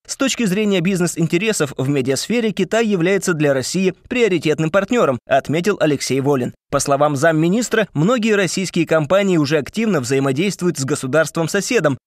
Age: 20-39